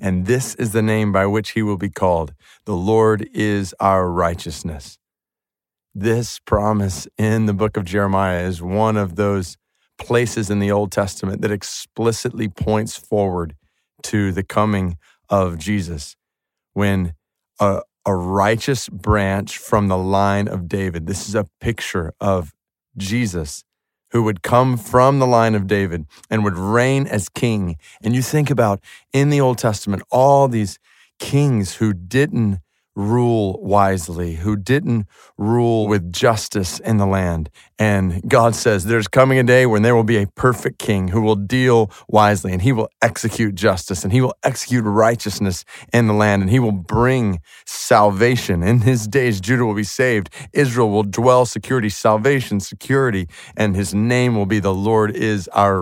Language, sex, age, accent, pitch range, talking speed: English, male, 40-59, American, 95-115 Hz, 160 wpm